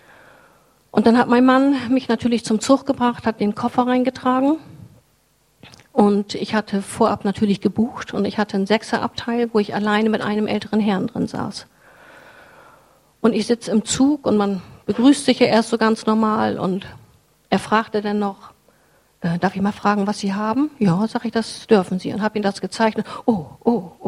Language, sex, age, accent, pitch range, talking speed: German, female, 50-69, German, 210-250 Hz, 180 wpm